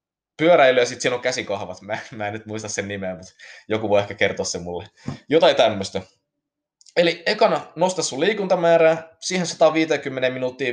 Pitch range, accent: 110-165 Hz, native